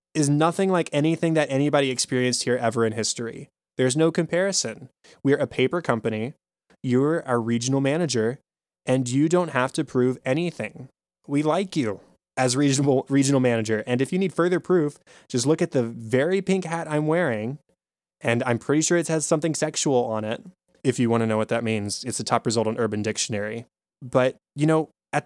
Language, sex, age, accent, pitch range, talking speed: English, male, 20-39, American, 120-160 Hz, 190 wpm